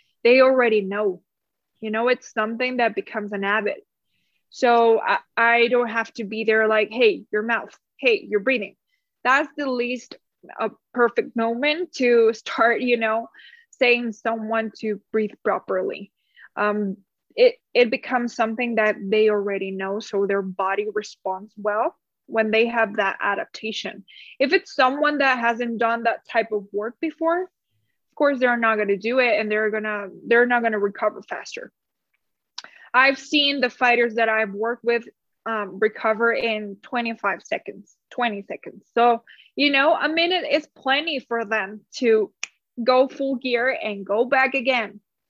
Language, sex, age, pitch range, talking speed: English, female, 20-39, 215-255 Hz, 165 wpm